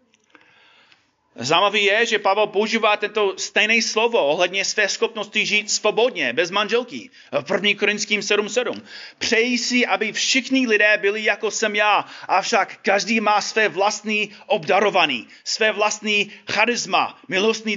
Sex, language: male, Czech